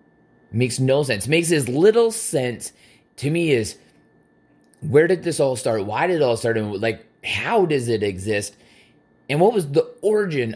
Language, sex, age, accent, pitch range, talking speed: English, male, 30-49, American, 110-155 Hz, 175 wpm